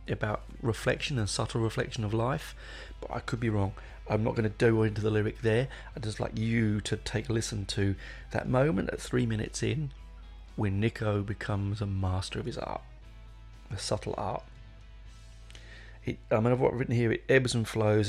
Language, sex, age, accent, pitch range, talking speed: English, male, 30-49, British, 105-125 Hz, 195 wpm